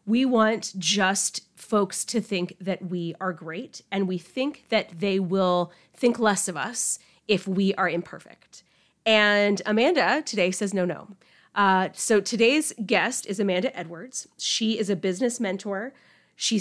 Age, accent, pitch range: 30-49, American, 185-235 Hz